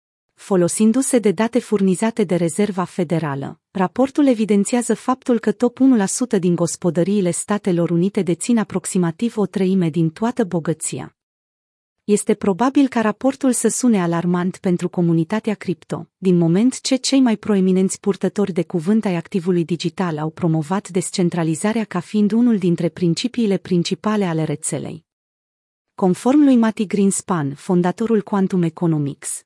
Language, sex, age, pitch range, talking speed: Romanian, female, 30-49, 175-220 Hz, 130 wpm